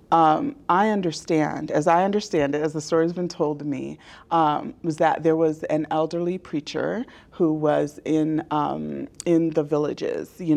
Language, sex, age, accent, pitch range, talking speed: English, female, 30-49, American, 150-170 Hz, 175 wpm